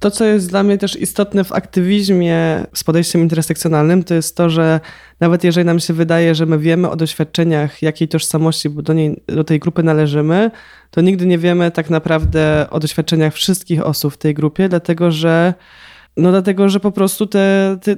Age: 20-39